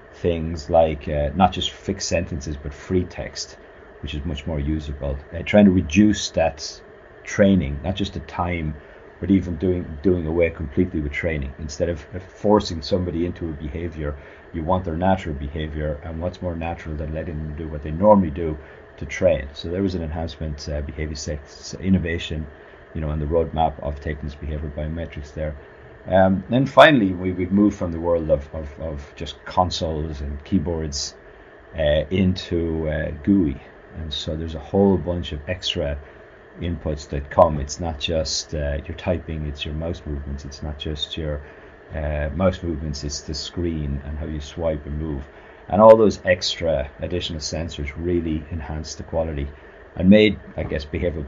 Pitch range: 75-90 Hz